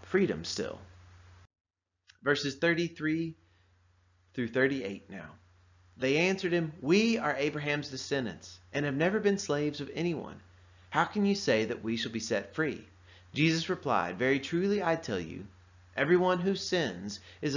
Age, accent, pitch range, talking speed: 30-49, American, 90-140 Hz, 145 wpm